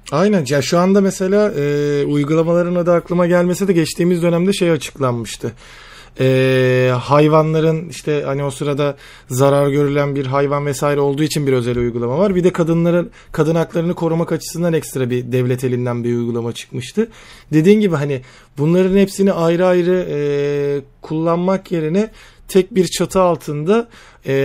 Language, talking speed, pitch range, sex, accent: Turkish, 145 wpm, 145-180 Hz, male, native